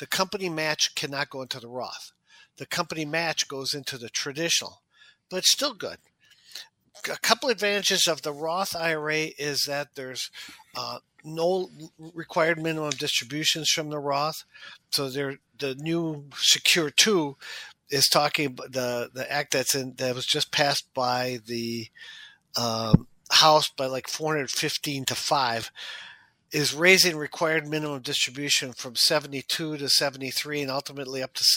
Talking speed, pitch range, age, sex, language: 150 wpm, 135-160 Hz, 50-69, male, English